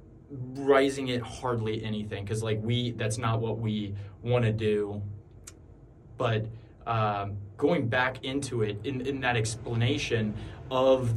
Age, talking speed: 20-39, 135 wpm